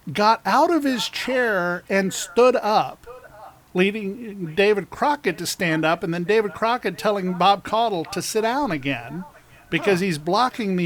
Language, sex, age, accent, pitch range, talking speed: English, male, 50-69, American, 165-215 Hz, 160 wpm